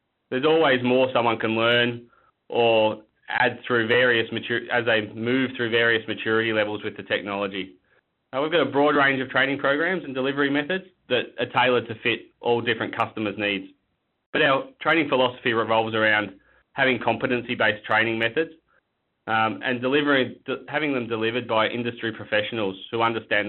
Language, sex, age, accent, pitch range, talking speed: English, male, 20-39, Australian, 110-130 Hz, 160 wpm